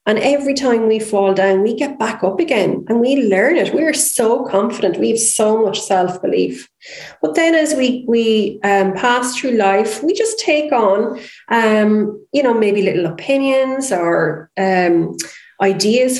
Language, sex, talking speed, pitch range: English, female, 170 wpm, 195-250 Hz